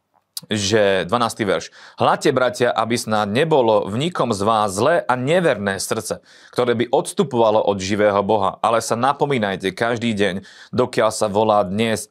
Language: Slovak